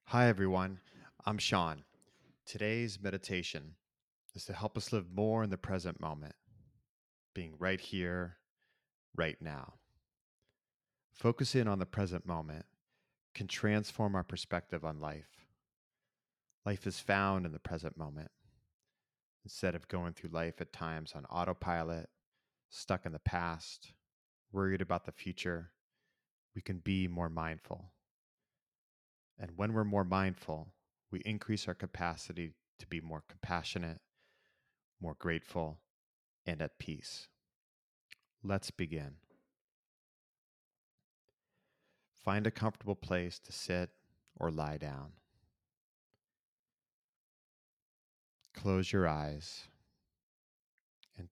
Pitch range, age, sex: 85-100 Hz, 30-49, male